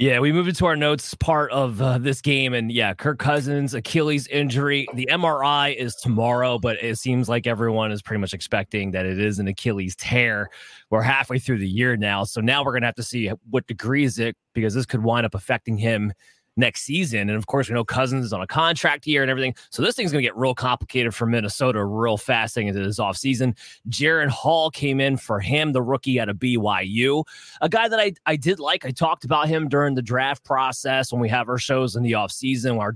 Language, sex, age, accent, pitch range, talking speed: English, male, 20-39, American, 115-145 Hz, 235 wpm